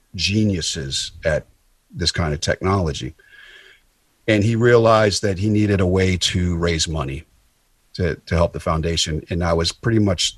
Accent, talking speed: American, 155 wpm